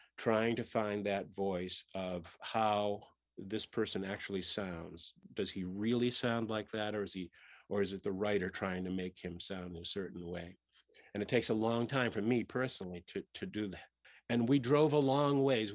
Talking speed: 200 wpm